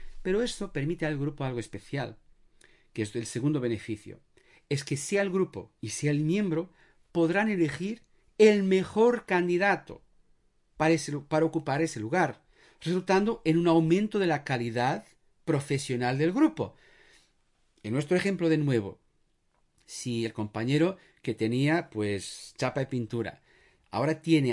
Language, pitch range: Spanish, 110-165 Hz